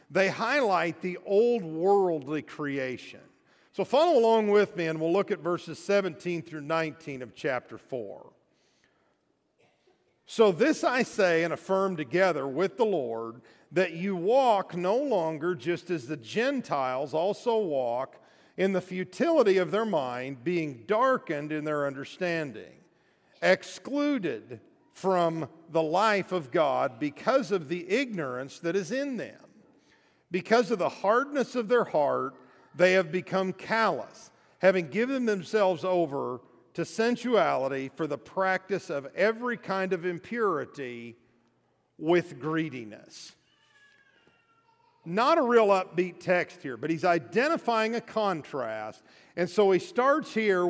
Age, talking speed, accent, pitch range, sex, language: 50-69, 130 wpm, American, 160-215 Hz, male, English